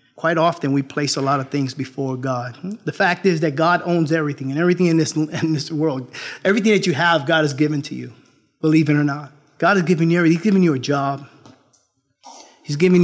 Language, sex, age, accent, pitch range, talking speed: English, male, 30-49, American, 145-195 Hz, 220 wpm